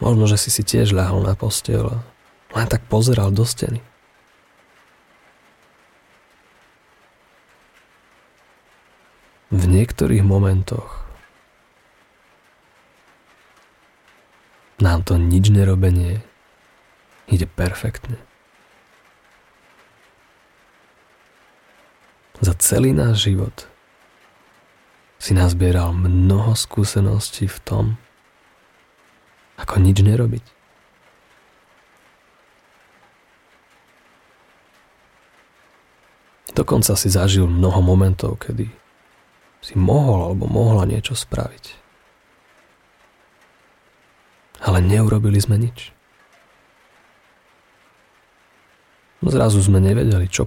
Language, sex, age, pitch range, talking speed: Slovak, male, 30-49, 95-115 Hz, 65 wpm